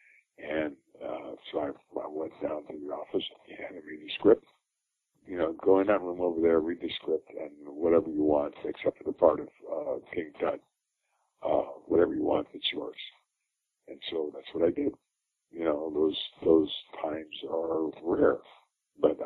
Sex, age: male, 60-79